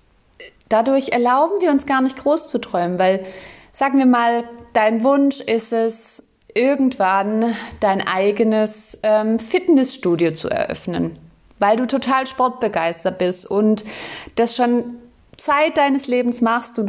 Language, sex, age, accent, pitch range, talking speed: German, female, 30-49, German, 190-245 Hz, 130 wpm